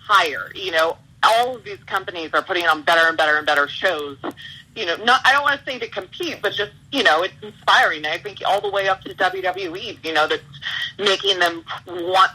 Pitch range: 150-190 Hz